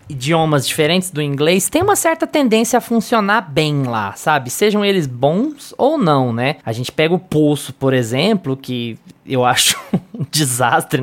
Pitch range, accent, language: 135-190 Hz, Brazilian, Portuguese